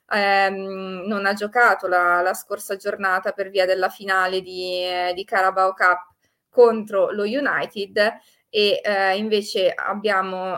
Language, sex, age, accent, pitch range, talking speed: Italian, female, 20-39, native, 190-210 Hz, 135 wpm